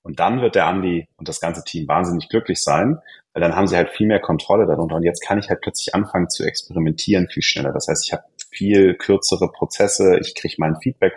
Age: 30-49